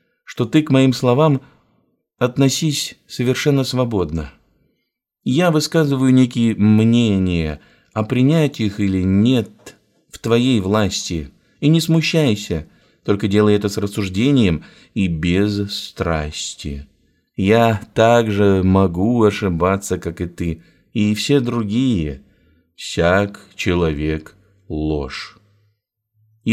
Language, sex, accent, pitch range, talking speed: Russian, male, native, 90-115 Hz, 100 wpm